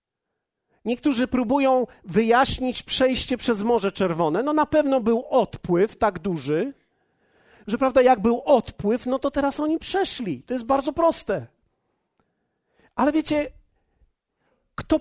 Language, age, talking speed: Polish, 40-59, 125 wpm